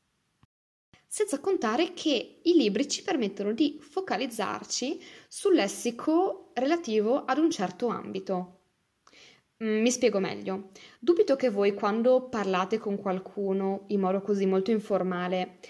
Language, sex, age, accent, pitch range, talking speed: Italian, female, 20-39, native, 205-285 Hz, 120 wpm